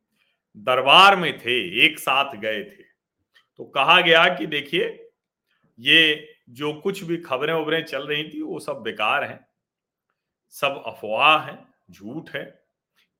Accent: native